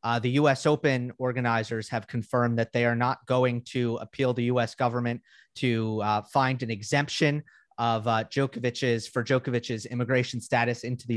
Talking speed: 165 wpm